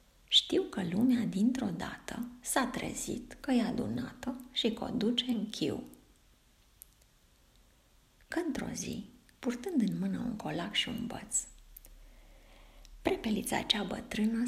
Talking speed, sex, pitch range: 125 wpm, female, 215-250 Hz